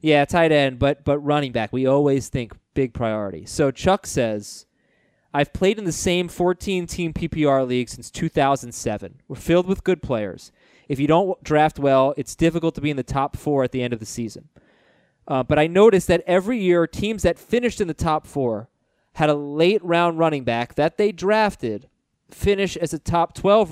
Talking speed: 190 wpm